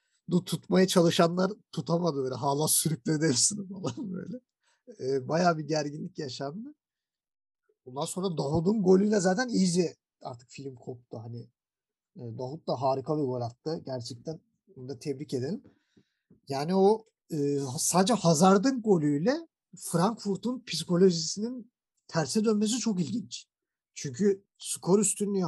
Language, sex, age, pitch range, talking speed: Turkish, male, 50-69, 140-210 Hz, 110 wpm